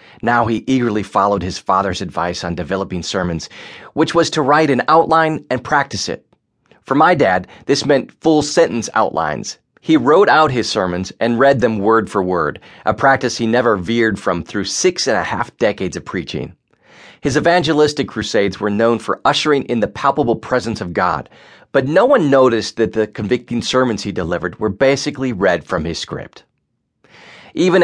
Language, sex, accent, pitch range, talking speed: English, male, American, 100-140 Hz, 175 wpm